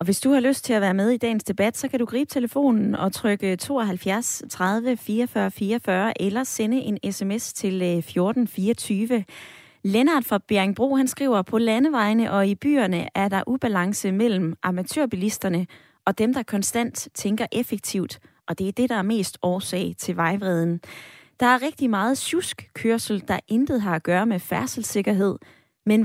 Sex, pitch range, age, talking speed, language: female, 190-245 Hz, 20-39, 170 wpm, Danish